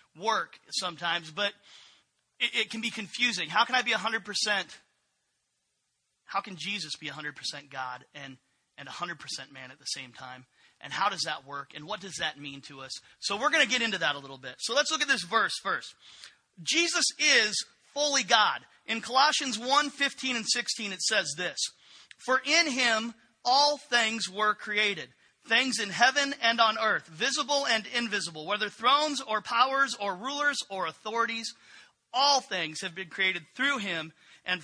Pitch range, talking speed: 175-245 Hz, 185 wpm